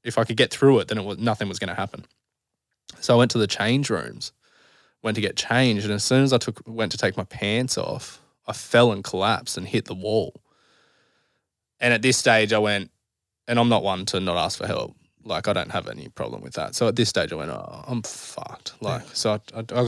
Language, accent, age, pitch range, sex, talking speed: English, Australian, 20-39, 105-120 Hz, male, 245 wpm